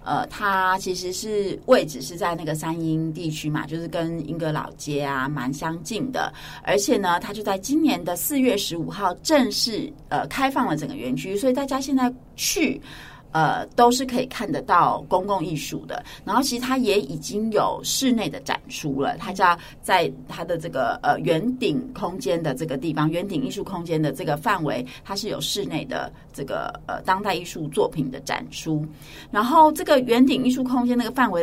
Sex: female